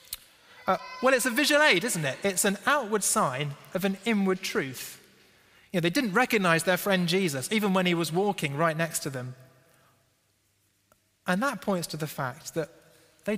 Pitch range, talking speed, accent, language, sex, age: 175-235 Hz, 185 wpm, British, English, male, 30-49